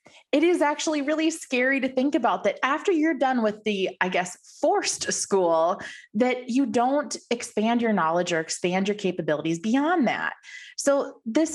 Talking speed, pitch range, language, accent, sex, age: 165 wpm, 175-260 Hz, English, American, female, 20-39